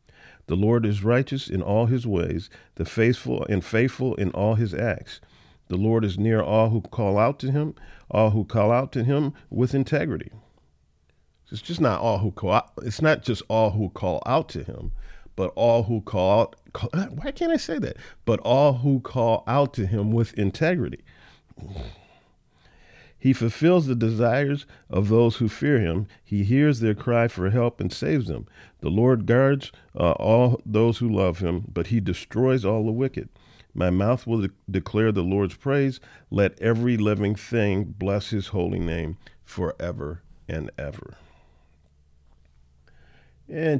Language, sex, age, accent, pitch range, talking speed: English, male, 50-69, American, 95-125 Hz, 165 wpm